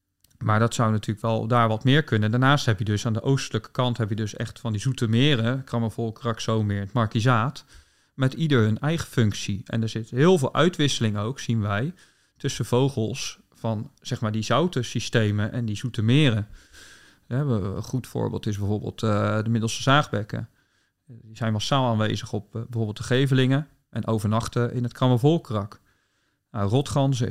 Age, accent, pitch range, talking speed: 40-59, Dutch, 110-130 Hz, 180 wpm